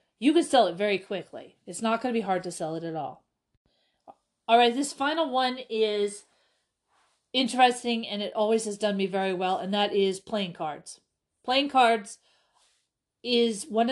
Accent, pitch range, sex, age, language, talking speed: American, 190-240 Hz, female, 40-59, English, 175 wpm